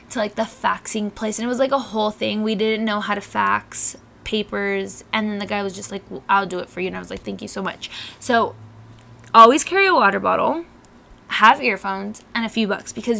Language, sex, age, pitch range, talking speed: English, female, 10-29, 205-255 Hz, 240 wpm